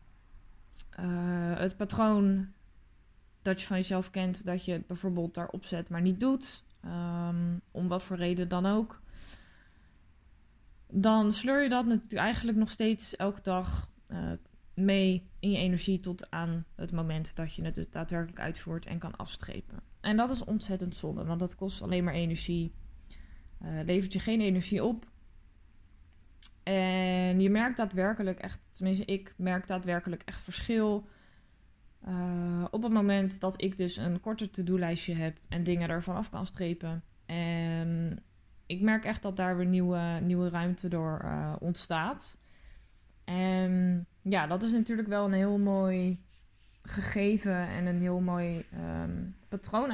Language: Dutch